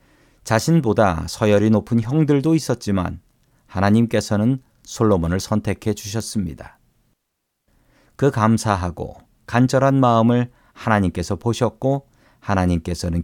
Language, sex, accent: Korean, male, native